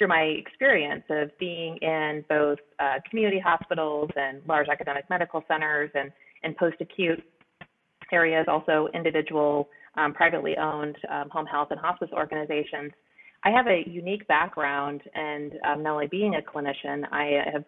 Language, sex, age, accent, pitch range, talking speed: English, female, 30-49, American, 150-170 Hz, 150 wpm